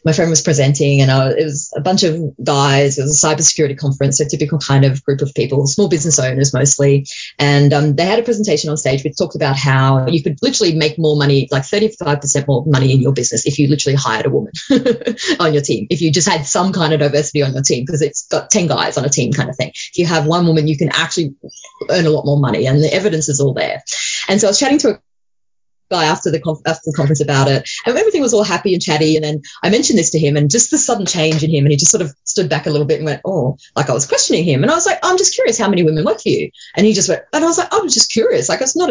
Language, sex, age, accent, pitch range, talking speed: English, female, 20-39, Australian, 145-200 Hz, 290 wpm